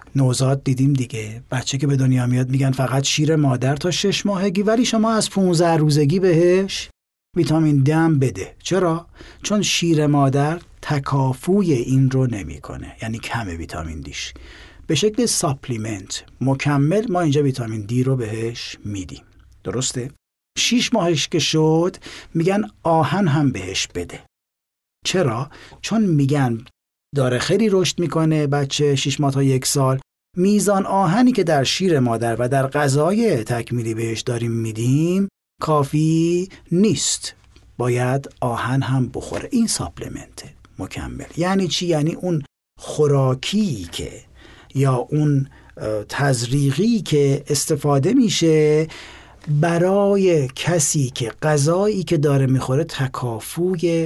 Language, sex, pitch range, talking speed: English, male, 125-170 Hz, 125 wpm